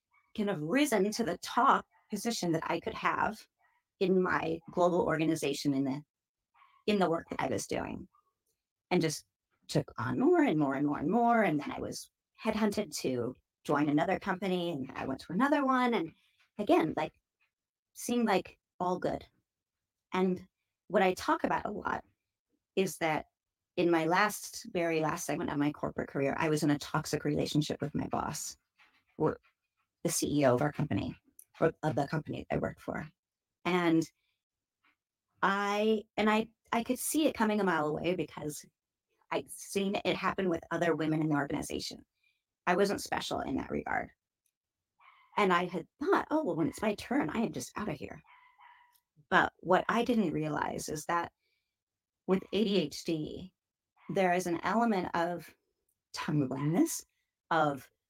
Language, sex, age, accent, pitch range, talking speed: English, female, 40-59, American, 155-215 Hz, 165 wpm